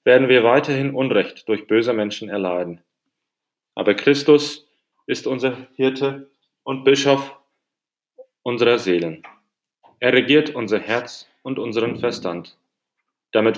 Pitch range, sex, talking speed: 100-135 Hz, male, 110 wpm